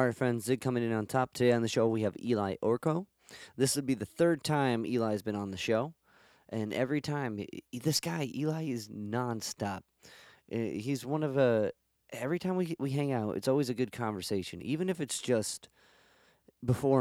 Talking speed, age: 190 wpm, 30-49